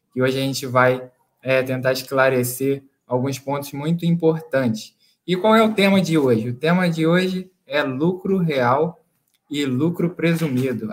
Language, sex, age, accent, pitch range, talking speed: Portuguese, male, 20-39, Brazilian, 135-165 Hz, 155 wpm